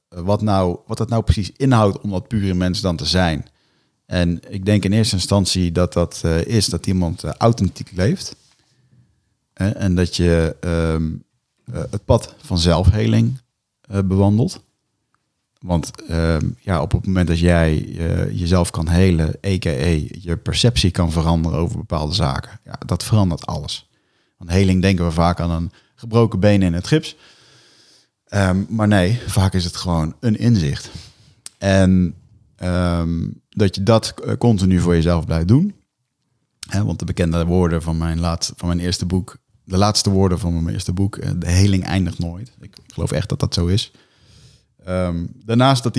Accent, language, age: Dutch, Dutch, 40-59